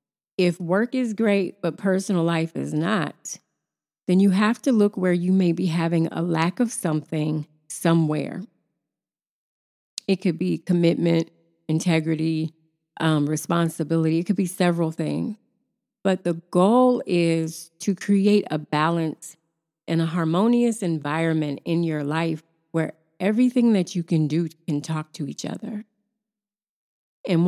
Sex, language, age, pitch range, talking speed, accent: female, English, 30-49, 160-200 Hz, 140 wpm, American